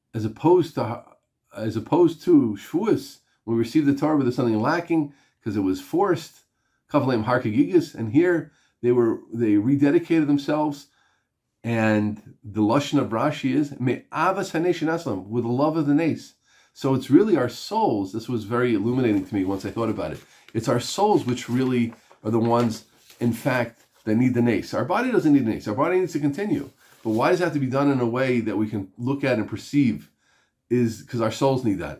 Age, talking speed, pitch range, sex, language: 40-59, 185 wpm, 115-150 Hz, male, English